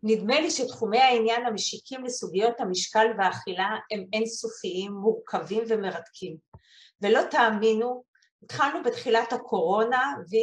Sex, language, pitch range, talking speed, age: female, Hebrew, 190-235 Hz, 105 wpm, 40-59